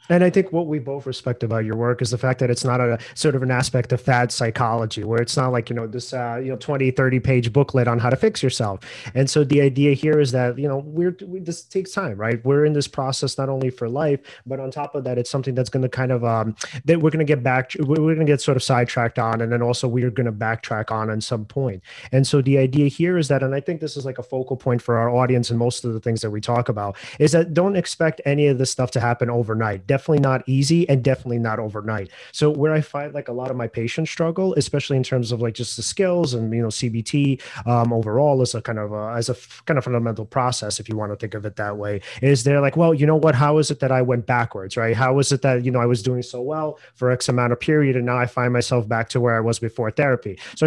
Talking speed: 285 wpm